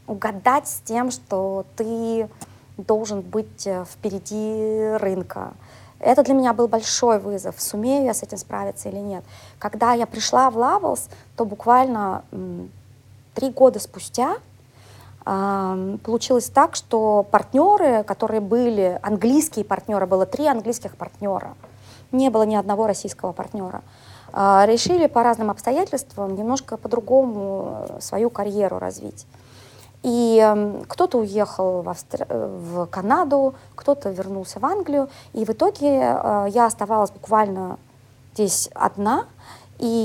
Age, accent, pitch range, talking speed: 30-49, native, 190-240 Hz, 115 wpm